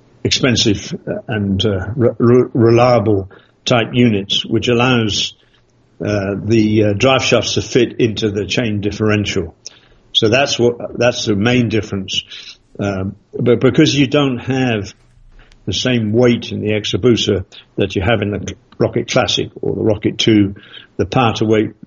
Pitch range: 105-120 Hz